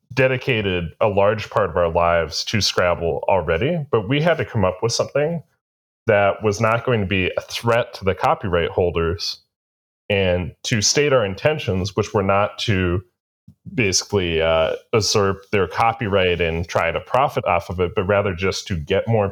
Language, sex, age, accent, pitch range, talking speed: English, male, 30-49, American, 90-115 Hz, 175 wpm